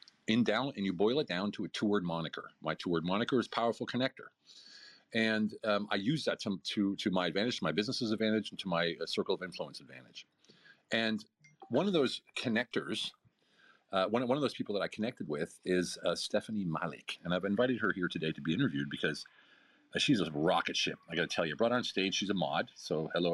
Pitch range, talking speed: 90-115 Hz, 225 wpm